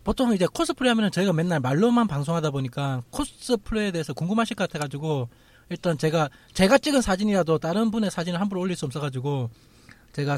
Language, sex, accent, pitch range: Korean, male, native, 140-205 Hz